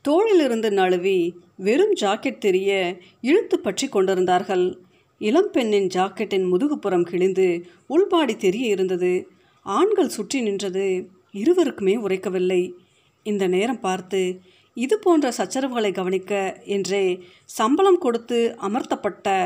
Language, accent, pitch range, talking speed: Tamil, native, 185-270 Hz, 95 wpm